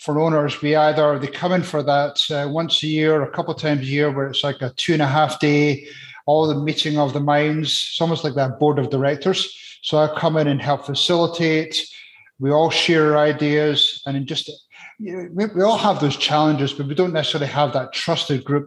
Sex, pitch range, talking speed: male, 140-155 Hz, 220 wpm